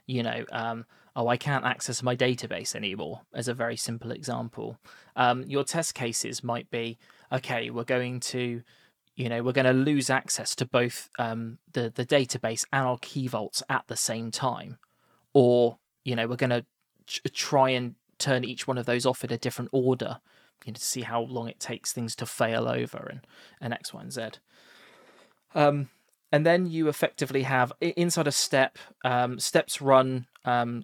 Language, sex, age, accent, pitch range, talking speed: English, male, 20-39, British, 120-130 Hz, 185 wpm